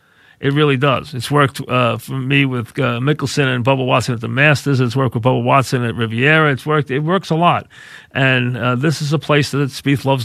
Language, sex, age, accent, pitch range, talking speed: English, male, 40-59, American, 125-145 Hz, 230 wpm